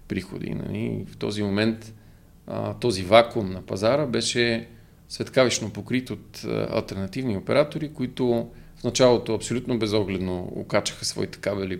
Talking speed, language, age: 115 wpm, Bulgarian, 40-59